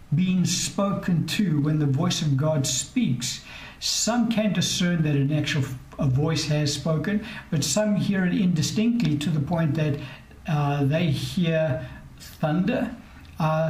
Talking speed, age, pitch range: 140 wpm, 60-79, 135-170 Hz